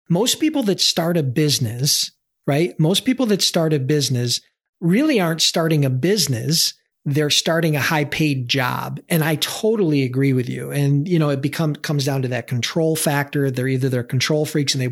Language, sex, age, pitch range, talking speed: English, male, 40-59, 135-170 Hz, 195 wpm